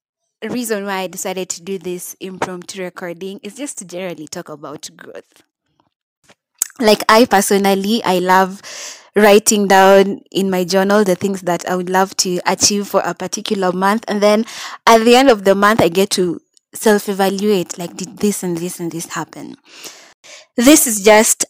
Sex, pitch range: female, 185-230 Hz